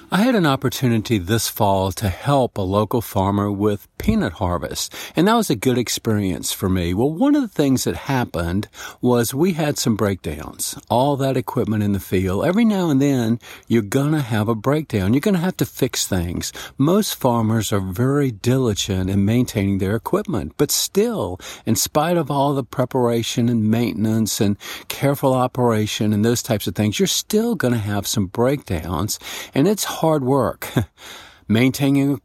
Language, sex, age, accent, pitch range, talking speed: English, male, 50-69, American, 105-140 Hz, 175 wpm